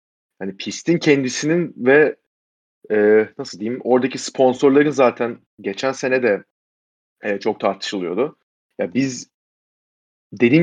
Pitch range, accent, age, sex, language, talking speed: 105-145 Hz, native, 30-49, male, Turkish, 105 wpm